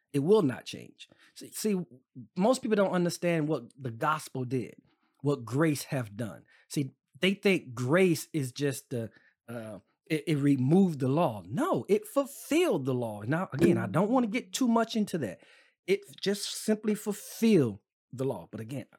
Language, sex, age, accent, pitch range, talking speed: English, male, 40-59, American, 130-200 Hz, 175 wpm